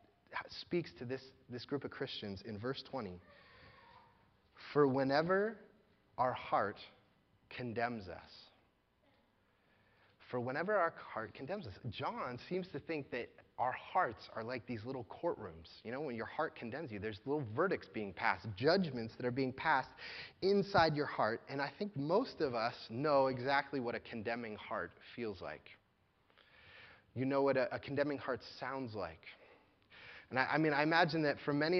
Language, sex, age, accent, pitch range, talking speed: English, male, 30-49, American, 110-145 Hz, 160 wpm